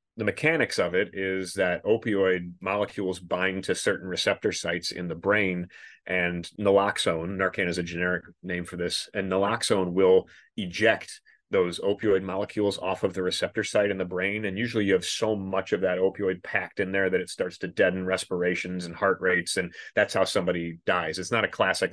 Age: 30-49